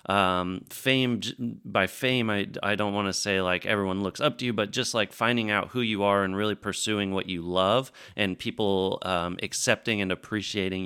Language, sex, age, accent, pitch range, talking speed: English, male, 30-49, American, 100-115 Hz, 200 wpm